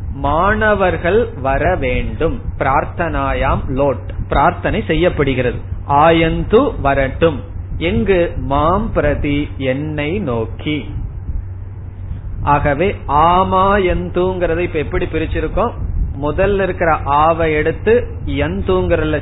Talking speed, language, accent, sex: 70 wpm, Tamil, native, male